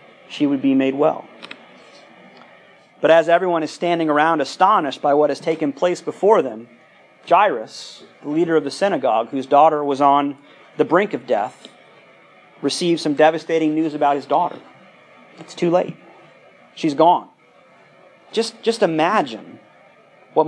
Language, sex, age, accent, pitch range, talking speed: English, male, 40-59, American, 150-180 Hz, 145 wpm